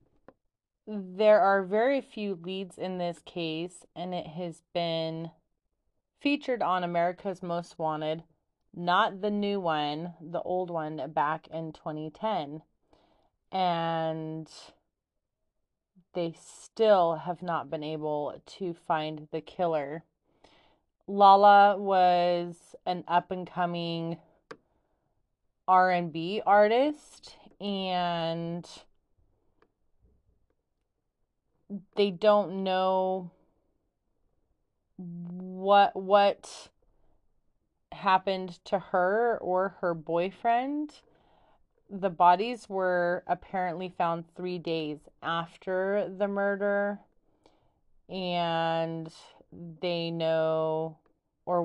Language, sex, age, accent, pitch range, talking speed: English, female, 30-49, American, 165-195 Hz, 80 wpm